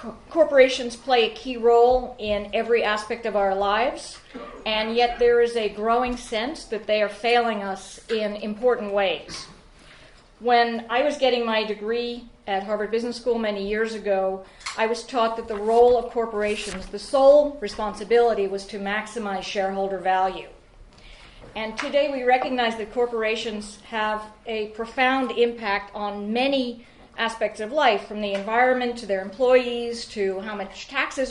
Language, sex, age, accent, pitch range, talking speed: English, female, 40-59, American, 205-240 Hz, 155 wpm